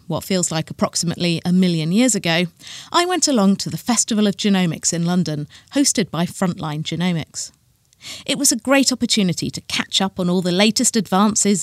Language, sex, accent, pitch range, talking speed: English, female, British, 160-230 Hz, 180 wpm